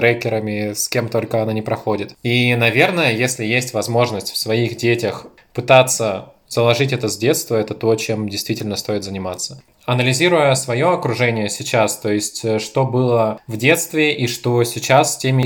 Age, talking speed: 20-39, 160 wpm